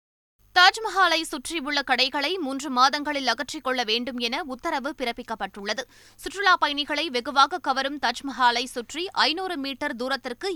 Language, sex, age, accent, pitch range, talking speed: Tamil, female, 20-39, native, 255-320 Hz, 110 wpm